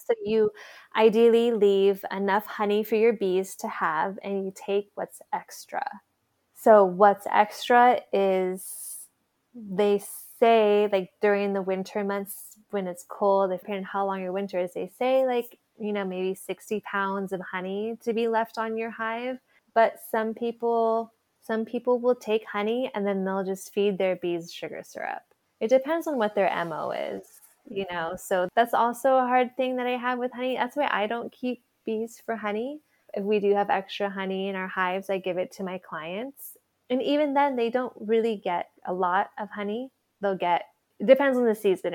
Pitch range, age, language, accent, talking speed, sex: 190-230 Hz, 20-39, English, American, 185 wpm, female